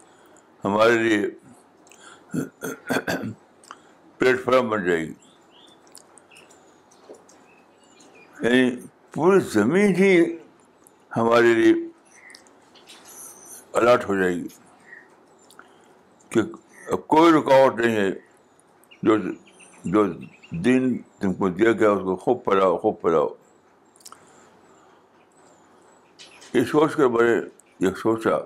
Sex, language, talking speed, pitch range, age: male, Urdu, 65 wpm, 110-170 Hz, 60-79